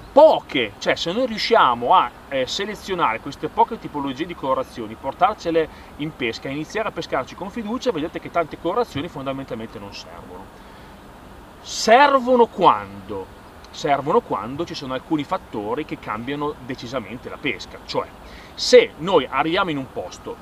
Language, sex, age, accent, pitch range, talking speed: Italian, male, 30-49, native, 130-180 Hz, 140 wpm